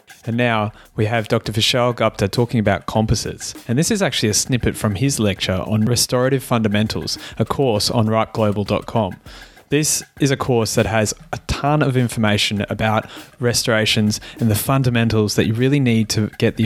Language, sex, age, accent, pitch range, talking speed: English, male, 20-39, Australian, 105-120 Hz, 175 wpm